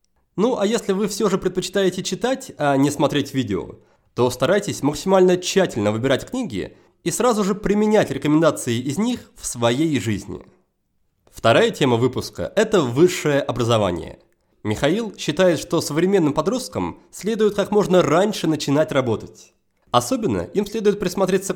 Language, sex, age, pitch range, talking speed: Russian, male, 30-49, 135-200 Hz, 135 wpm